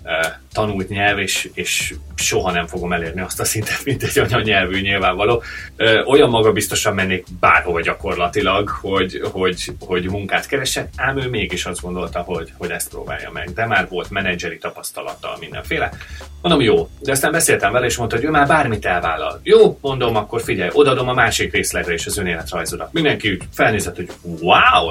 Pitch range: 90-125 Hz